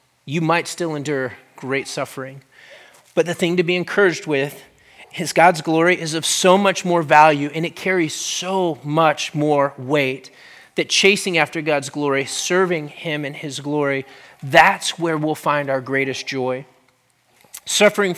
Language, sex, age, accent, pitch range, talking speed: English, male, 30-49, American, 145-180 Hz, 155 wpm